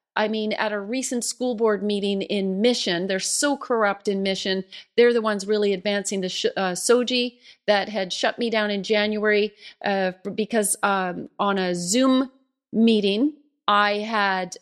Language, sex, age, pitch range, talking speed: English, female, 40-59, 195-235 Hz, 160 wpm